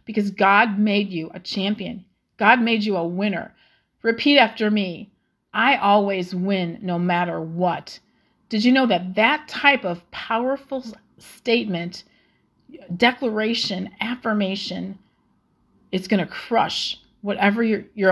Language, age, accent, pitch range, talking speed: English, 40-59, American, 180-225 Hz, 125 wpm